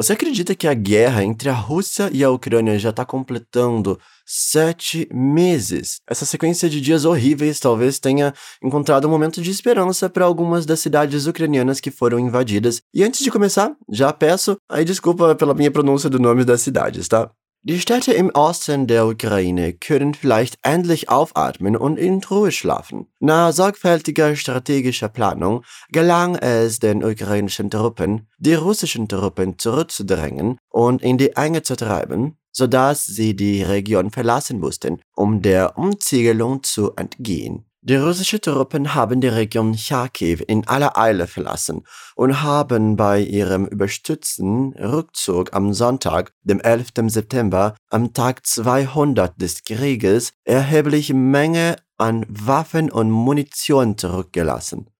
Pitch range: 110-155 Hz